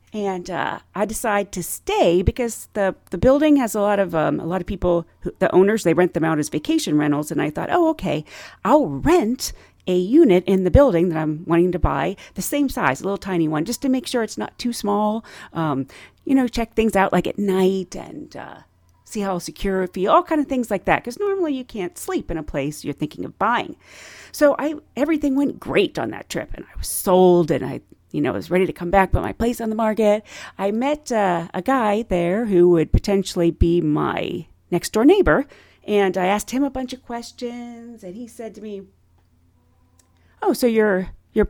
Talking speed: 225 wpm